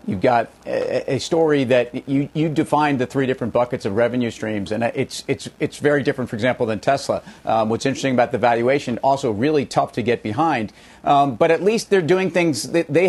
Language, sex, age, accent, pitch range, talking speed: English, male, 40-59, American, 125-150 Hz, 210 wpm